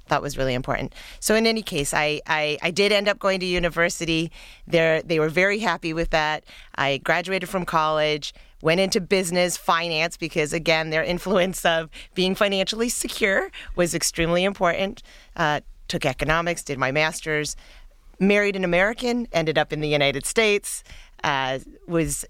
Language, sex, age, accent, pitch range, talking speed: English, female, 40-59, American, 150-190 Hz, 160 wpm